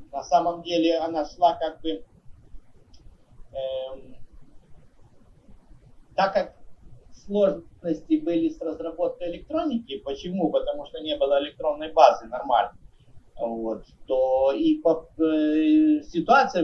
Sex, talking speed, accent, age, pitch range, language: male, 105 wpm, native, 50-69, 150-230 Hz, Russian